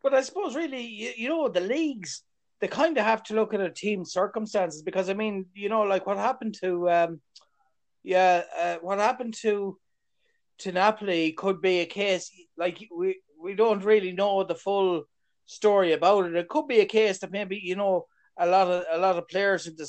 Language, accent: English, Irish